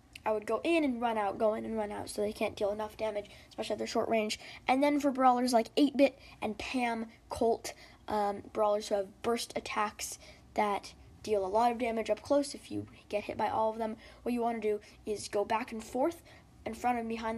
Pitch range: 215-265 Hz